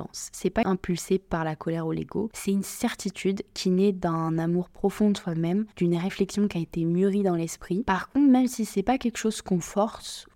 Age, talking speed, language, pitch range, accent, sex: 20-39, 210 wpm, French, 175-205 Hz, French, female